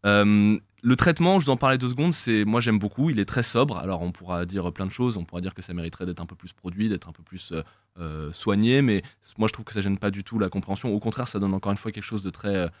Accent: French